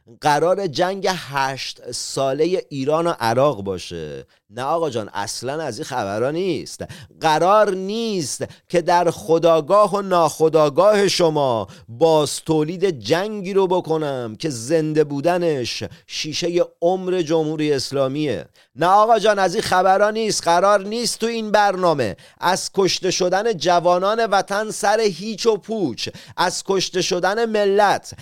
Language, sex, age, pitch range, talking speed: Persian, male, 40-59, 165-205 Hz, 130 wpm